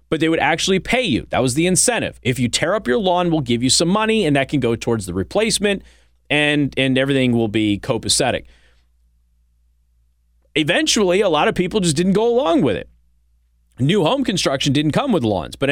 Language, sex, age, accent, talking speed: English, male, 30-49, American, 200 wpm